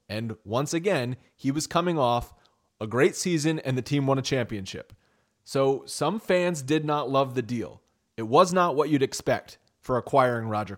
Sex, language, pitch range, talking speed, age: male, English, 110-140 Hz, 185 wpm, 30-49